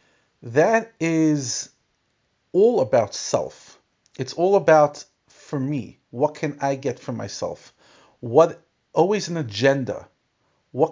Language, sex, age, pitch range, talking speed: English, male, 40-59, 120-160 Hz, 115 wpm